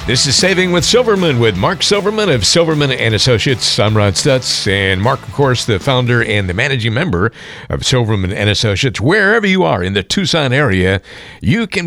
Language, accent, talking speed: English, American, 180 wpm